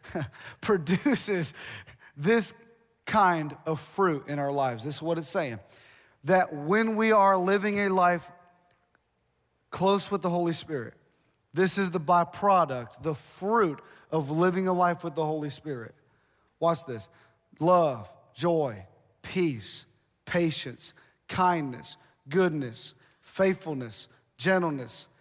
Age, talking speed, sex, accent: 30-49, 115 wpm, male, American